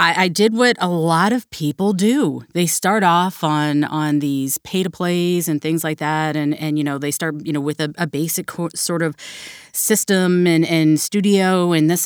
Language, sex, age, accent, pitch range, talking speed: English, female, 30-49, American, 155-190 Hz, 205 wpm